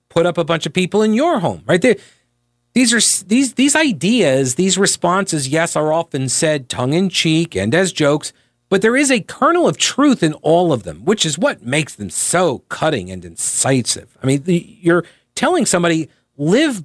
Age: 40-59